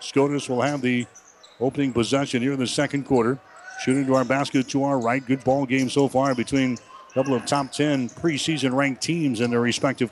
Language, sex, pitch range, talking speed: English, male, 130-150 Hz, 200 wpm